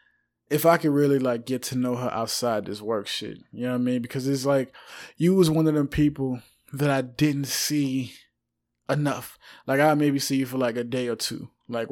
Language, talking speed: English, 220 wpm